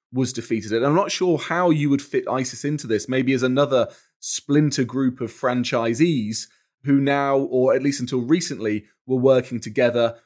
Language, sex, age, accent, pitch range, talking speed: English, male, 20-39, British, 115-145 Hz, 175 wpm